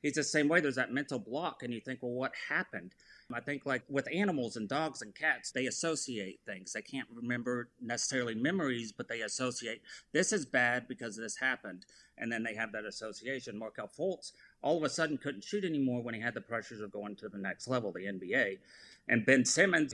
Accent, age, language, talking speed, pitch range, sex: American, 30-49, English, 215 wpm, 120-150 Hz, male